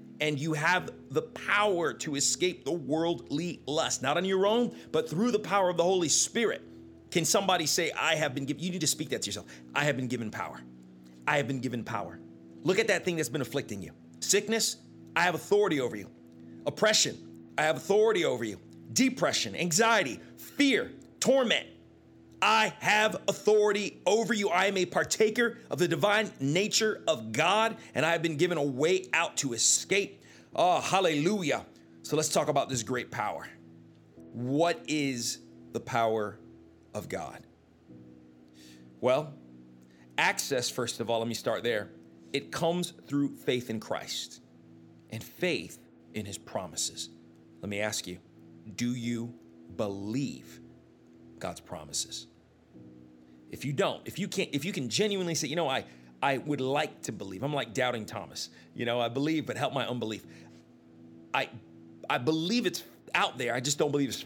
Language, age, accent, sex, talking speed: English, 40-59, American, male, 170 wpm